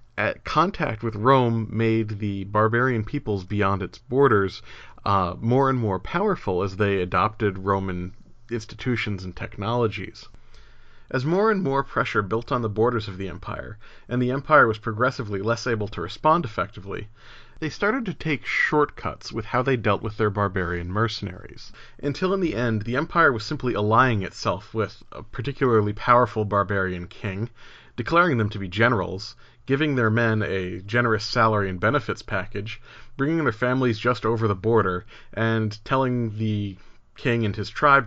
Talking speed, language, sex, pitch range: 160 wpm, English, male, 105-125 Hz